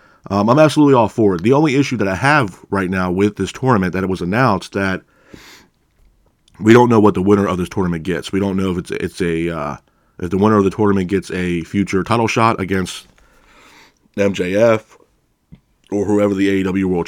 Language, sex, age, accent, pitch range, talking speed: English, male, 30-49, American, 95-105 Hz, 205 wpm